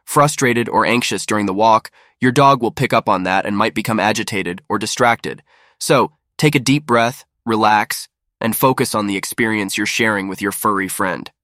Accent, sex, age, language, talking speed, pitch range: American, male, 20-39, English, 190 wpm, 100-130 Hz